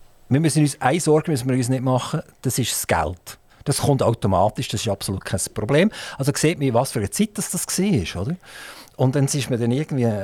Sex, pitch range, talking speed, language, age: male, 115-150 Hz, 210 wpm, German, 50-69